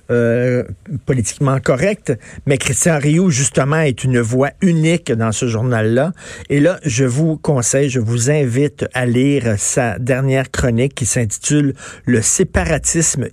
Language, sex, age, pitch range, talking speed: French, male, 50-69, 120-150 Hz, 145 wpm